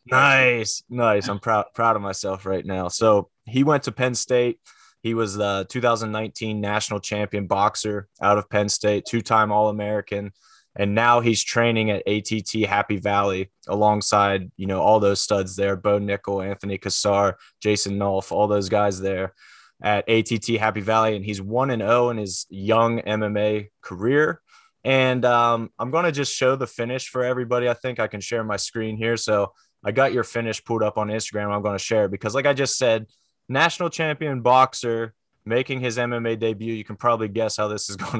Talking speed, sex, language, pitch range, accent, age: 185 wpm, male, English, 100-120 Hz, American, 20-39